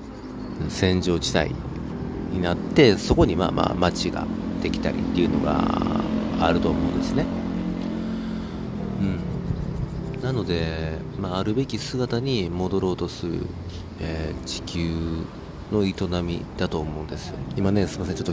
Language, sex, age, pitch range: Japanese, male, 40-59, 85-105 Hz